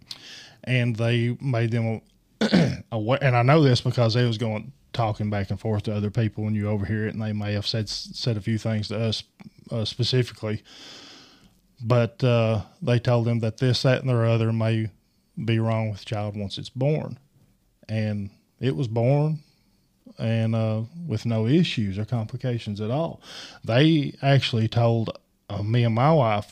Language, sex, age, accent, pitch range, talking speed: English, male, 20-39, American, 105-125 Hz, 175 wpm